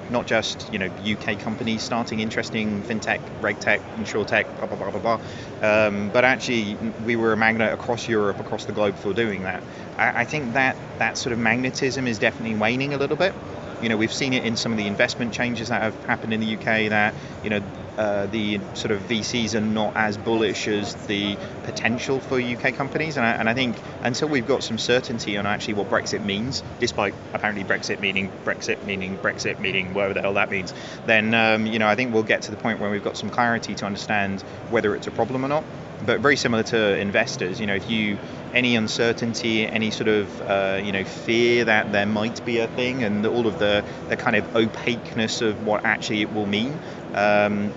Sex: male